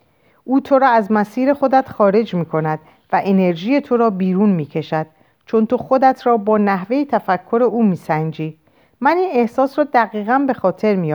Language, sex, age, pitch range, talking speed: Persian, female, 50-69, 165-240 Hz, 185 wpm